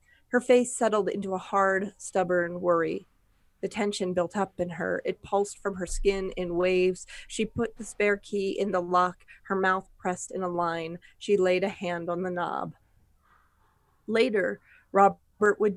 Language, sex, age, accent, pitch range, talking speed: English, female, 30-49, American, 180-205 Hz, 170 wpm